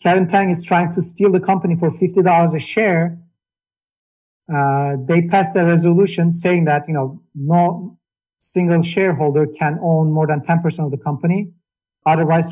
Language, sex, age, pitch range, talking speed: English, male, 50-69, 150-175 Hz, 160 wpm